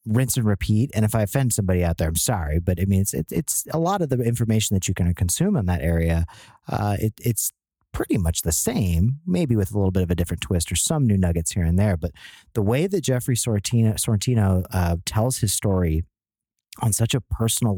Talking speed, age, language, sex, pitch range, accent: 230 wpm, 30-49, English, male, 90-115 Hz, American